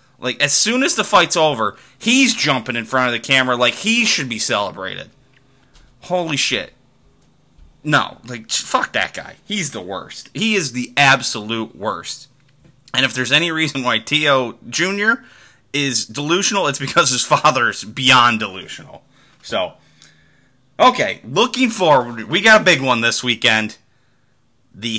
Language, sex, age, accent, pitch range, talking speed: English, male, 20-39, American, 120-175 Hz, 150 wpm